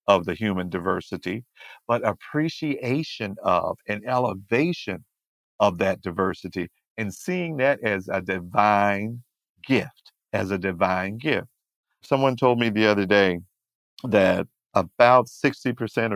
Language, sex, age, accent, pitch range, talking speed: English, male, 50-69, American, 95-120 Hz, 120 wpm